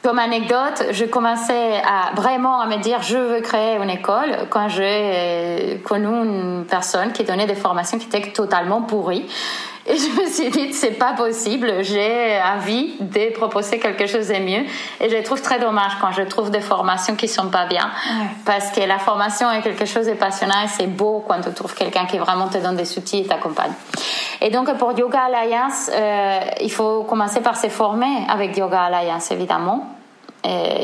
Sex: female